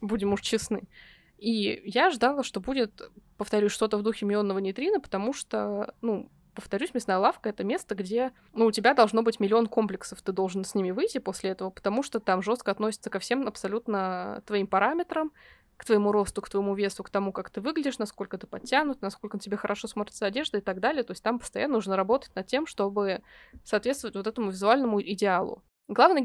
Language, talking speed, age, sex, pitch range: Russian, 190 wpm, 20-39, female, 200-245 Hz